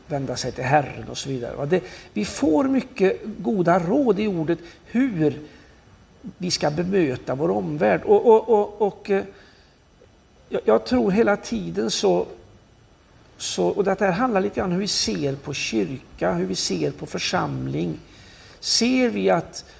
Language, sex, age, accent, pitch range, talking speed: Swedish, male, 60-79, native, 130-185 Hz, 150 wpm